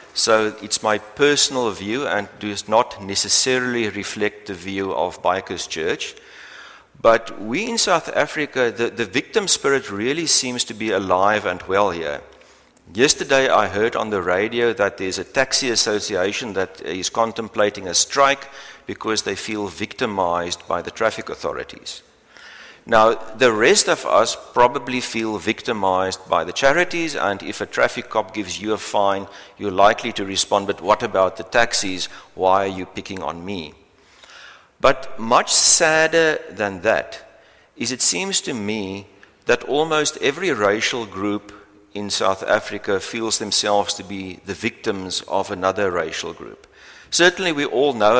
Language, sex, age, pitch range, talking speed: English, male, 60-79, 100-120 Hz, 155 wpm